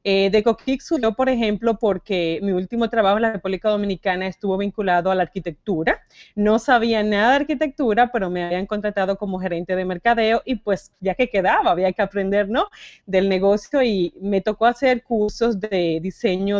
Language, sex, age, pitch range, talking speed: Spanish, female, 30-49, 190-245 Hz, 180 wpm